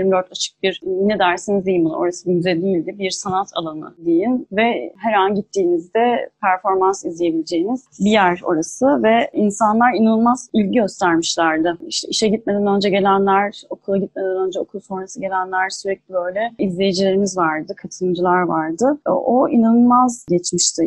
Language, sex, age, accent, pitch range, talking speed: Turkish, female, 30-49, native, 180-215 Hz, 140 wpm